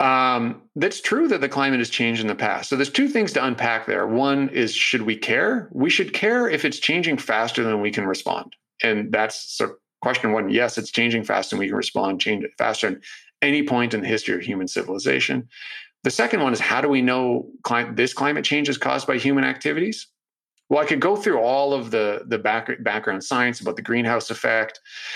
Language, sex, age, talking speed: English, male, 40-59, 210 wpm